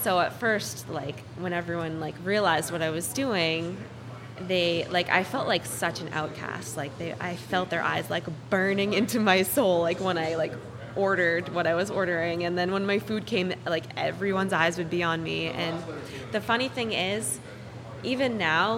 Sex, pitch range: female, 160-195 Hz